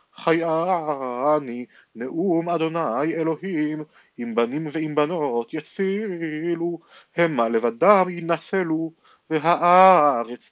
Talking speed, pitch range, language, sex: 75 wpm, 135-175 Hz, Hebrew, male